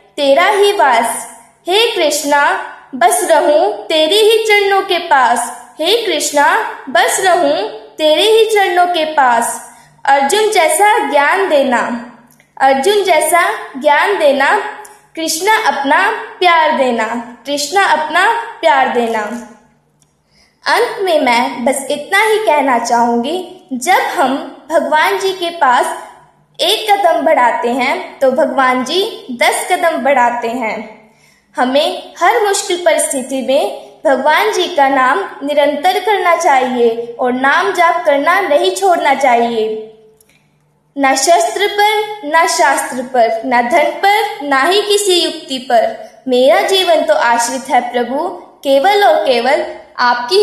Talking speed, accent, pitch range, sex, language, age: 125 wpm, native, 250-360 Hz, female, Hindi, 20-39